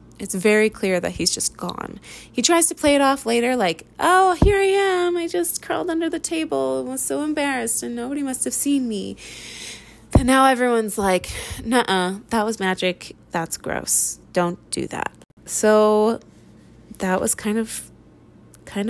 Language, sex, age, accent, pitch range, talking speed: English, female, 20-39, American, 195-255 Hz, 170 wpm